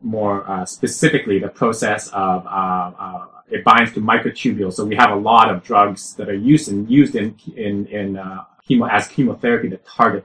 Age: 30-49